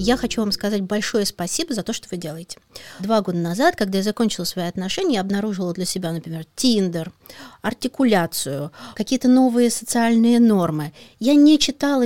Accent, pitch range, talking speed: native, 180-245 Hz, 165 wpm